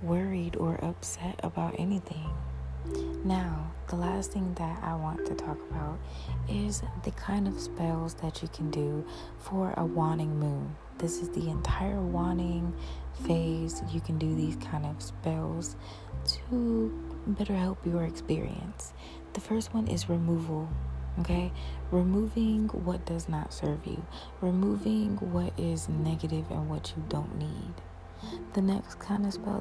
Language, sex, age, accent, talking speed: English, female, 30-49, American, 145 wpm